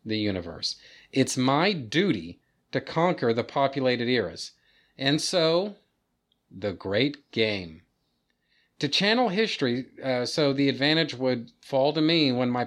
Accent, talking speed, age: American, 135 wpm, 40-59